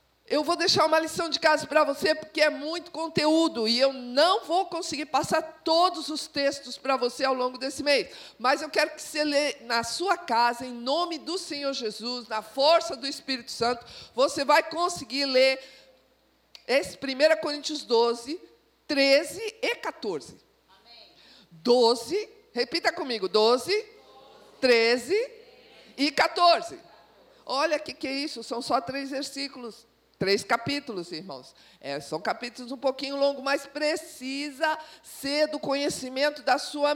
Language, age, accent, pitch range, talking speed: Portuguese, 50-69, Brazilian, 240-310 Hz, 150 wpm